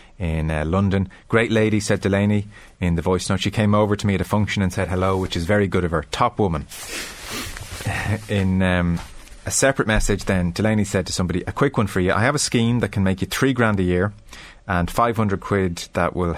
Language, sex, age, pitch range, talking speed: English, male, 30-49, 85-100 Hz, 225 wpm